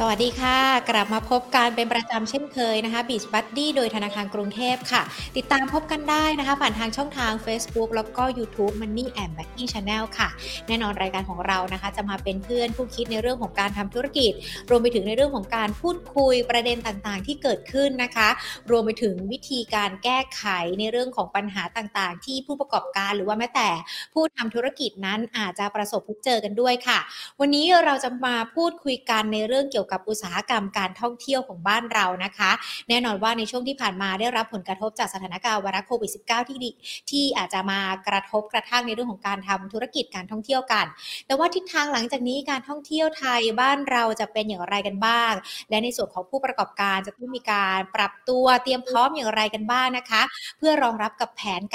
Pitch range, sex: 205-255 Hz, female